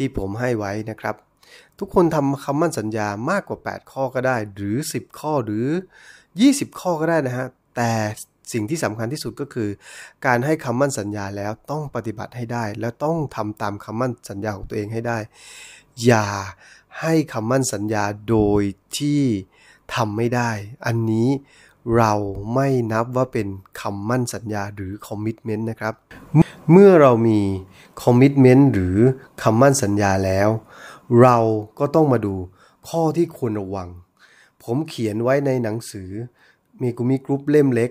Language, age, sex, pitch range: Thai, 20-39, male, 105-140 Hz